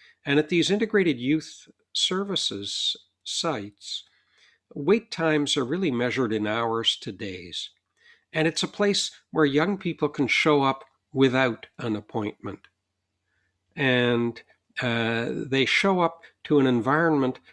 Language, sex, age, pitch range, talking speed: English, male, 60-79, 110-150 Hz, 125 wpm